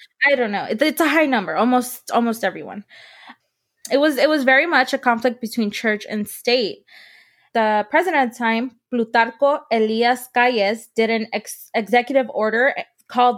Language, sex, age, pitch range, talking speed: English, female, 20-39, 210-250 Hz, 155 wpm